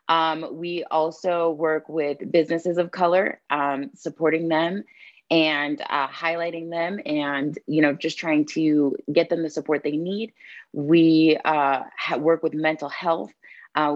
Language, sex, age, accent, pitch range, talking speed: English, female, 20-39, American, 150-175 Hz, 145 wpm